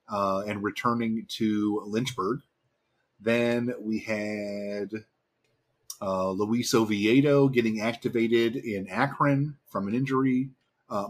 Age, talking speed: 30-49, 105 wpm